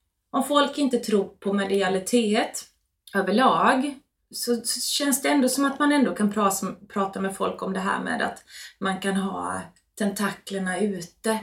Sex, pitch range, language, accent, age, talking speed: female, 180-235 Hz, Swedish, native, 20-39, 160 wpm